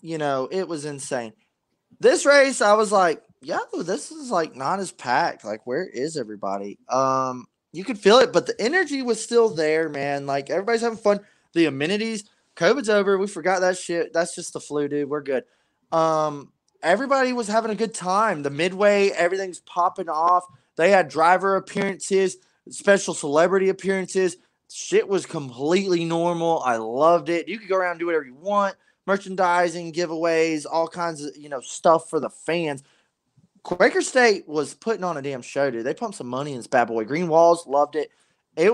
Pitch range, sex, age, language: 155-220 Hz, male, 20-39, English